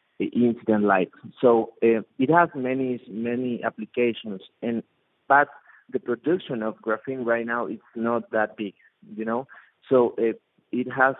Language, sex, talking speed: English, male, 145 wpm